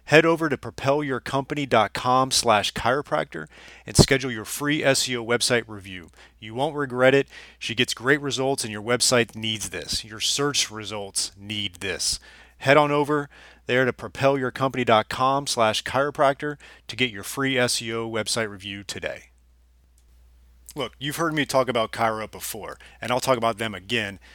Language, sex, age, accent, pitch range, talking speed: English, male, 30-49, American, 110-135 Hz, 145 wpm